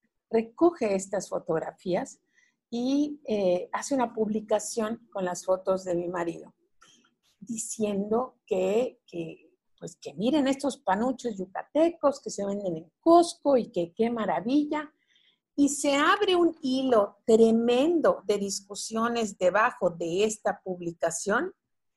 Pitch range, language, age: 205-290 Hz, Spanish, 50-69